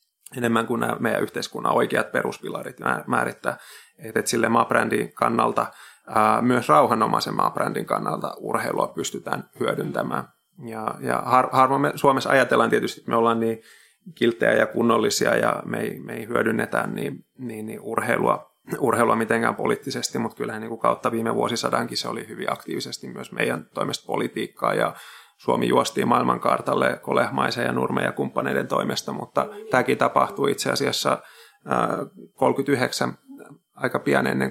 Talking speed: 125 wpm